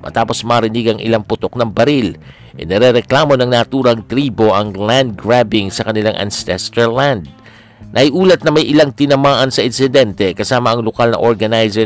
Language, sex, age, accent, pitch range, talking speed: Filipino, male, 50-69, native, 110-130 Hz, 150 wpm